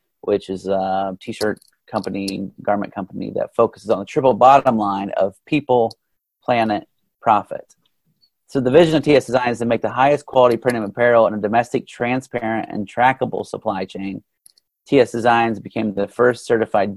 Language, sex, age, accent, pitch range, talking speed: English, male, 30-49, American, 100-130 Hz, 165 wpm